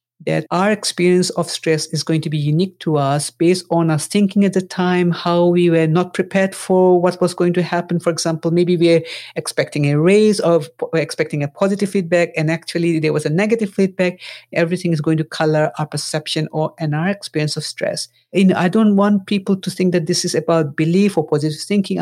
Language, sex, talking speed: English, female, 210 wpm